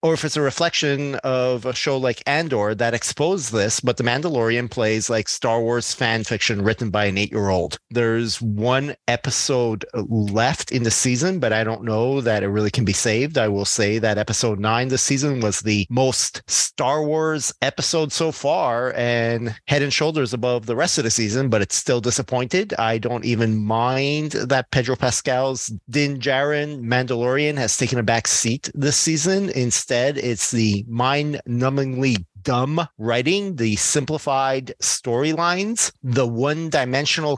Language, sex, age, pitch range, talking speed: English, male, 30-49, 115-145 Hz, 160 wpm